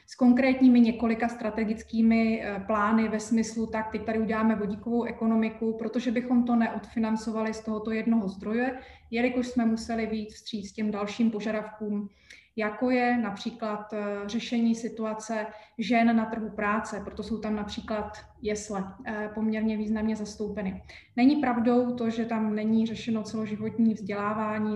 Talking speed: 135 wpm